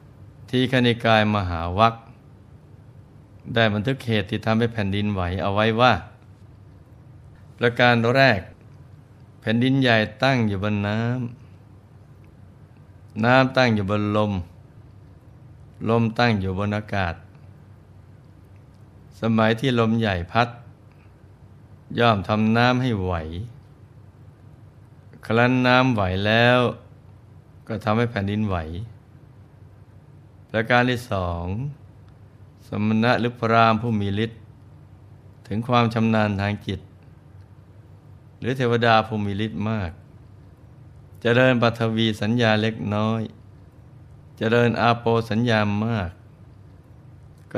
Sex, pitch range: male, 105-120 Hz